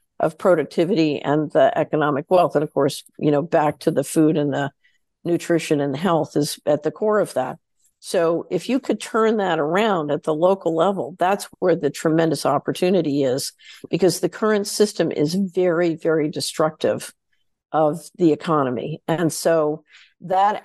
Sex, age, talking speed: female, 50-69, 165 wpm